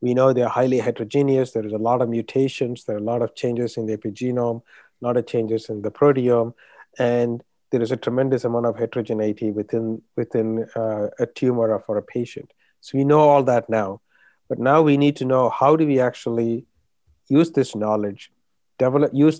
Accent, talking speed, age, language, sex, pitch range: Indian, 200 wpm, 50-69, English, male, 115-135 Hz